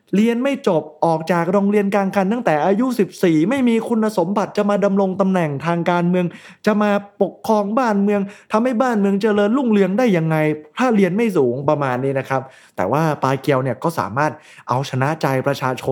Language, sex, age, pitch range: Thai, male, 20-39, 145-205 Hz